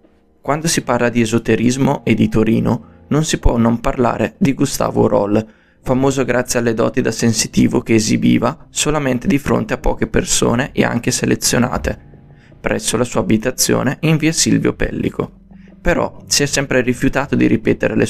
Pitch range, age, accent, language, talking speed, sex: 115-135 Hz, 20-39, native, Italian, 165 wpm, male